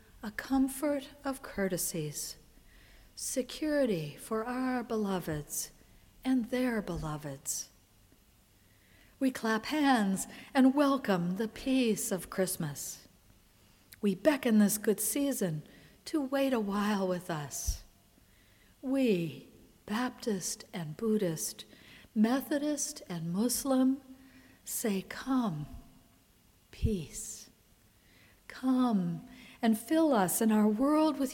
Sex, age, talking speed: female, 60-79, 95 wpm